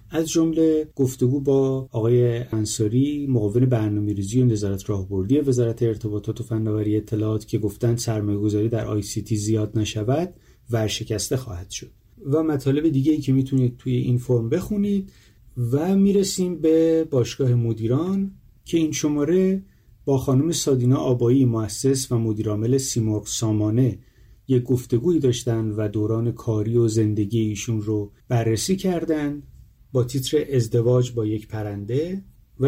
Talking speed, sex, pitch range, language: 135 wpm, male, 110-140 Hz, Persian